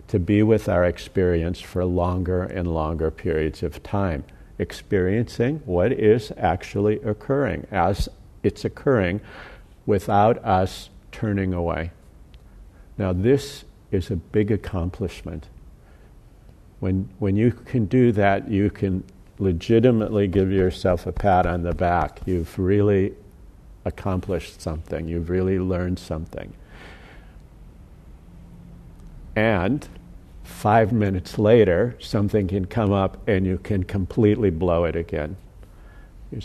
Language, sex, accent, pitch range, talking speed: English, male, American, 90-105 Hz, 115 wpm